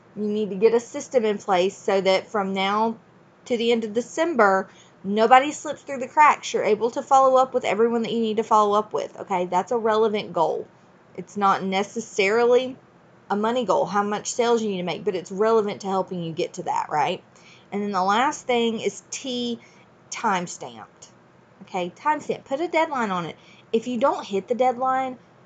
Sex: female